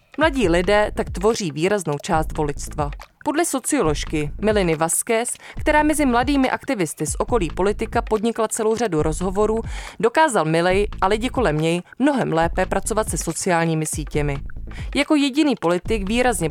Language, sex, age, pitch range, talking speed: Czech, female, 20-39, 160-255 Hz, 140 wpm